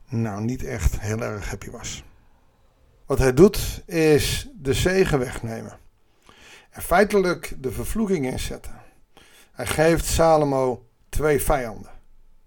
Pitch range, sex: 125-190 Hz, male